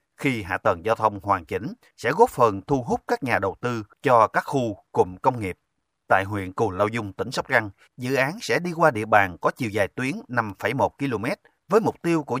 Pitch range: 105-135 Hz